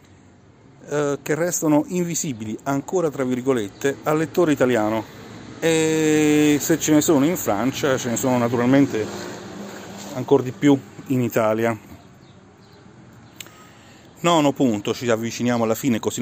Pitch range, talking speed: 115-140 Hz, 120 wpm